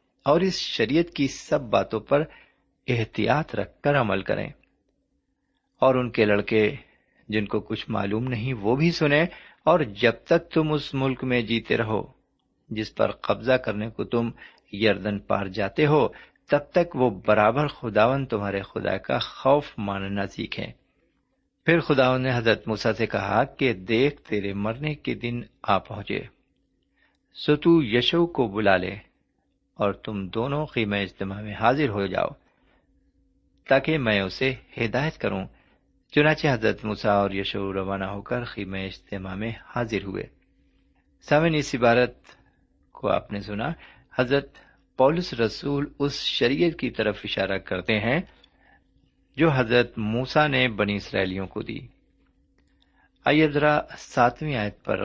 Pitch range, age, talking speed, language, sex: 105-140 Hz, 50-69, 140 wpm, Urdu, male